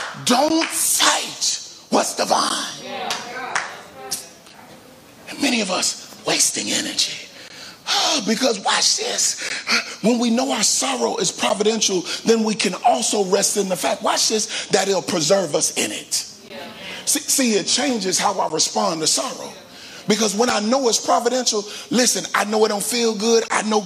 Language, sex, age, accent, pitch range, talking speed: English, male, 30-49, American, 185-235 Hz, 150 wpm